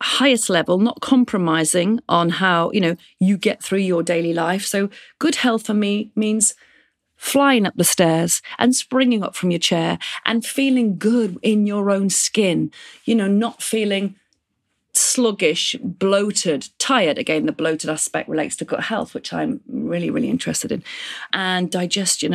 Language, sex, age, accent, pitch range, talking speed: English, female, 40-59, British, 180-245 Hz, 160 wpm